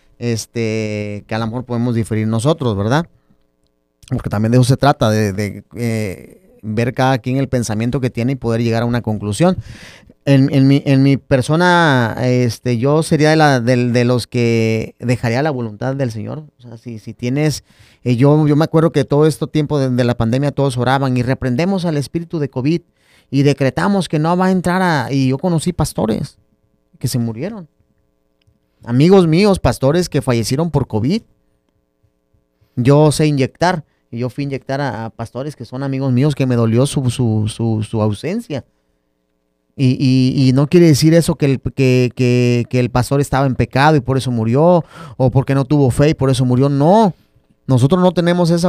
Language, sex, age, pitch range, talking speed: Spanish, male, 30-49, 115-150 Hz, 190 wpm